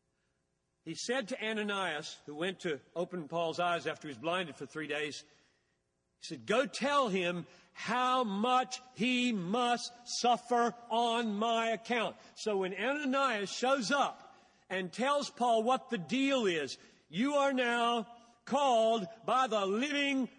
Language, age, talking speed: Hindi, 50-69, 145 wpm